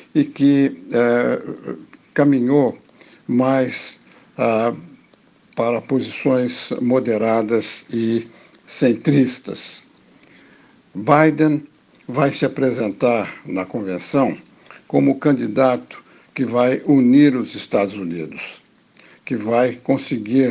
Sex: male